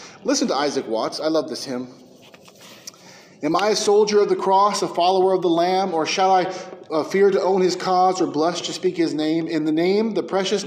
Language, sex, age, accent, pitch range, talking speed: English, male, 30-49, American, 165-245 Hz, 225 wpm